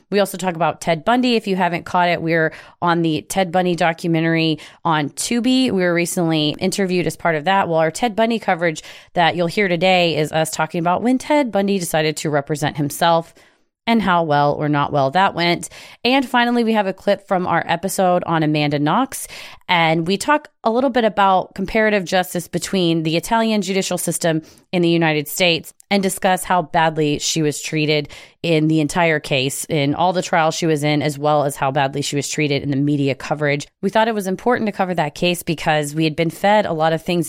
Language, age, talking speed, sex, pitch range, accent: English, 30-49, 215 wpm, female, 155-190 Hz, American